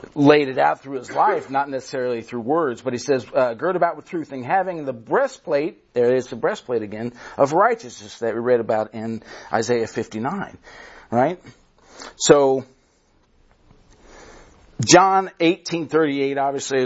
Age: 50-69